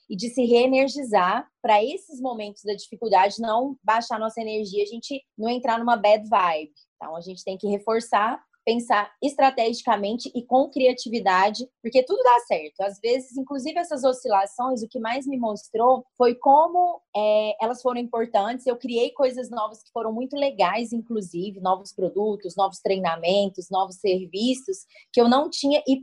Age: 20-39